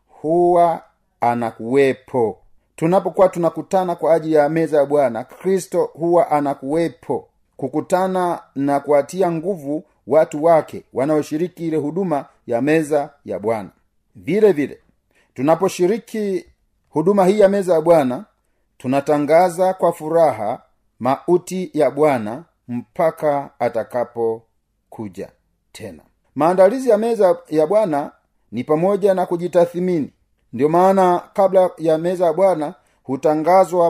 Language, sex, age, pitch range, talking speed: Swahili, male, 40-59, 140-175 Hz, 110 wpm